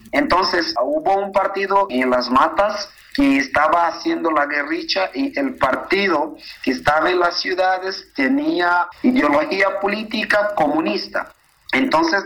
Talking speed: 120 wpm